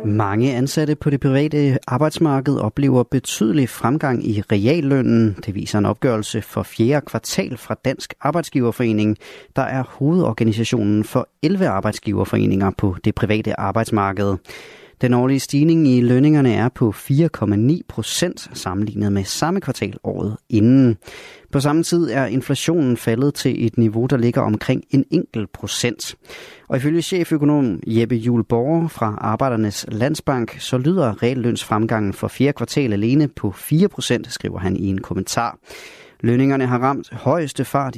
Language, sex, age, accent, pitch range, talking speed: Danish, male, 30-49, native, 105-135 Hz, 140 wpm